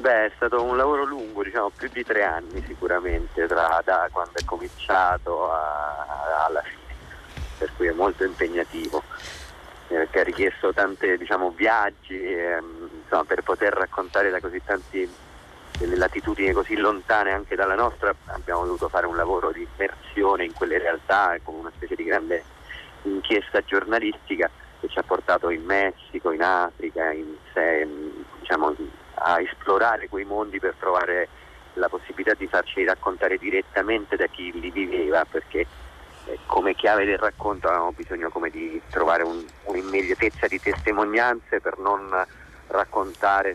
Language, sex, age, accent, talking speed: Italian, male, 30-49, native, 145 wpm